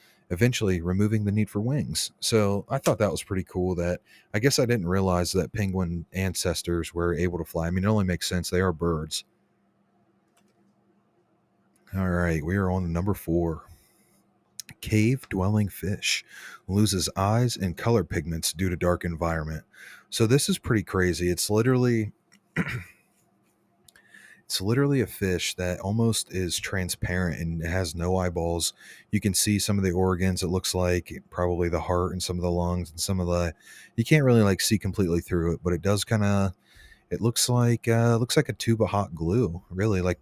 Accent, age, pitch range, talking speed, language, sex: American, 30-49, 90-105 Hz, 180 wpm, English, male